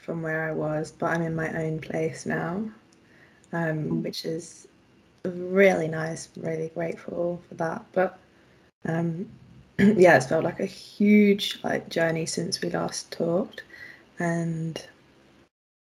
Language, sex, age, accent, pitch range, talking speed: English, female, 20-39, British, 135-170 Hz, 130 wpm